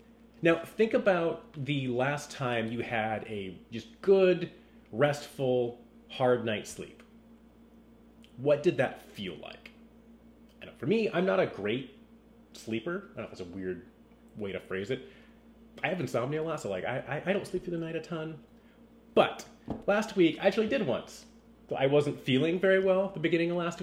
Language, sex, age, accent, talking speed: English, male, 30-49, American, 190 wpm